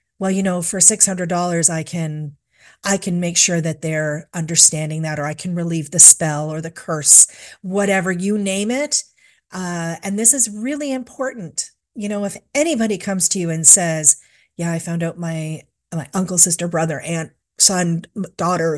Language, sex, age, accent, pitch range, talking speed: English, female, 40-59, American, 165-195 Hz, 175 wpm